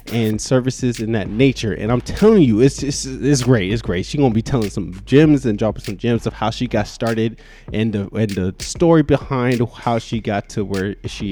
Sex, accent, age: male, American, 20-39